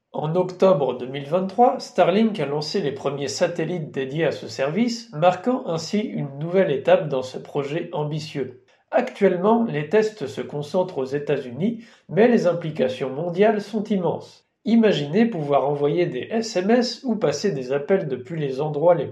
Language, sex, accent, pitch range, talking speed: French, male, French, 145-215 Hz, 150 wpm